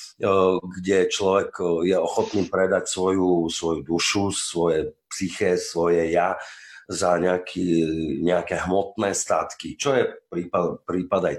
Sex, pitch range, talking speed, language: male, 85-105 Hz, 115 wpm, Slovak